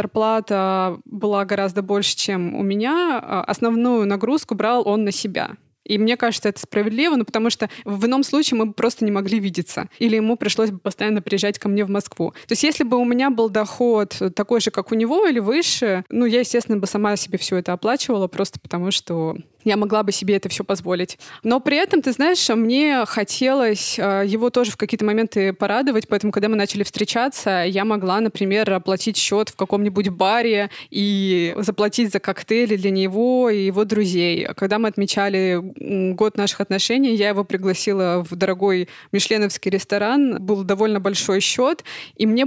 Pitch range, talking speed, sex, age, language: 195-235 Hz, 180 wpm, female, 20-39, Russian